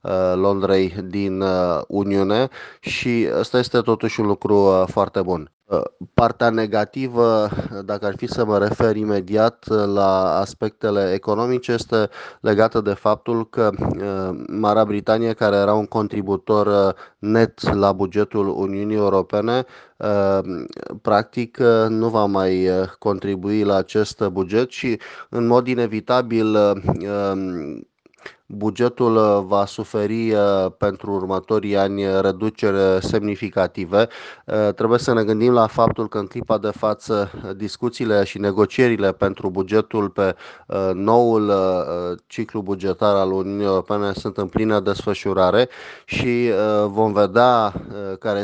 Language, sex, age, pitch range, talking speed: Romanian, male, 20-39, 95-110 Hz, 110 wpm